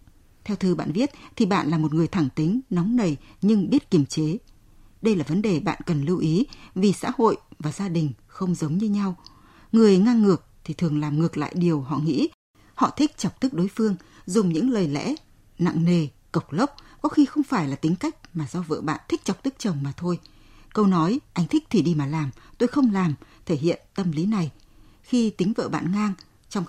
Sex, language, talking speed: female, Vietnamese, 225 wpm